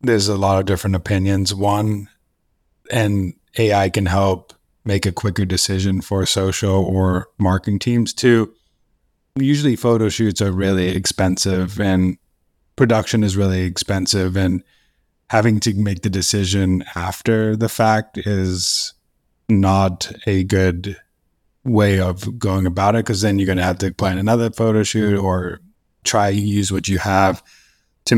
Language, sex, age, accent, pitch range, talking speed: English, male, 30-49, American, 95-105 Hz, 145 wpm